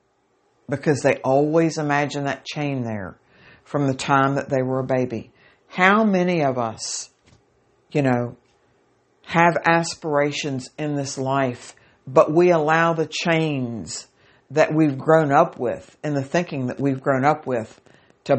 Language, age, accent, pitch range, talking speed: English, 60-79, American, 140-165 Hz, 145 wpm